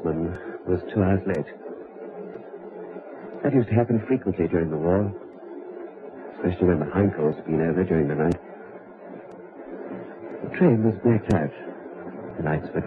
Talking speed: 140 wpm